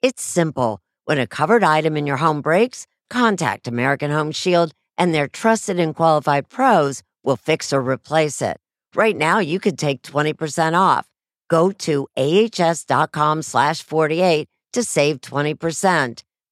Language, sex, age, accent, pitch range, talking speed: English, female, 60-79, American, 135-180 Hz, 145 wpm